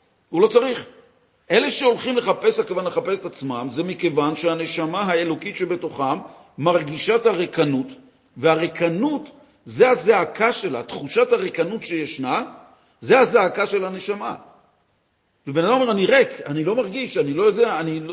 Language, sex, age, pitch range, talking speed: Hebrew, male, 50-69, 135-200 Hz, 135 wpm